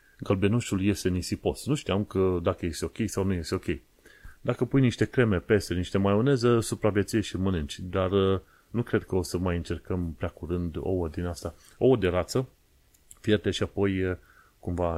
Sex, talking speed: male, 170 wpm